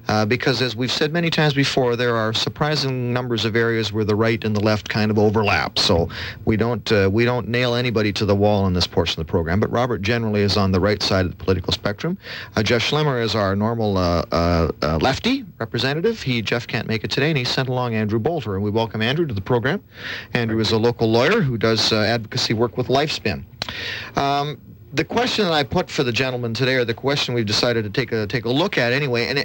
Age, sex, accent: 40-59, male, American